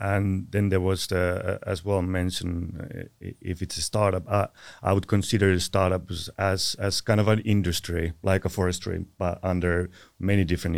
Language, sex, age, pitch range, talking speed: Finnish, male, 30-49, 90-100 Hz, 175 wpm